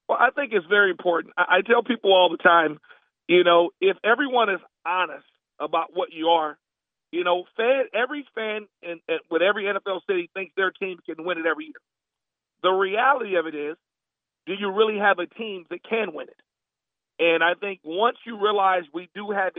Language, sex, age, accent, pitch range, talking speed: English, male, 40-59, American, 175-220 Hz, 195 wpm